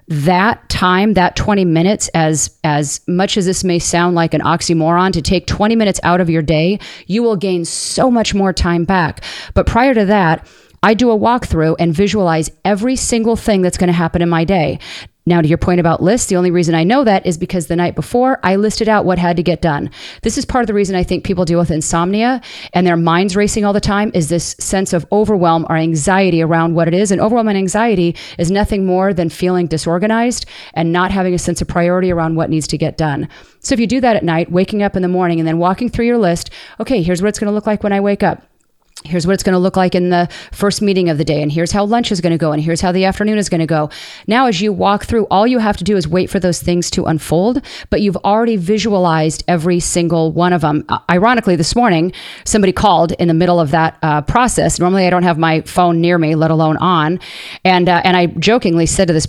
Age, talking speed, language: 30-49, 250 wpm, English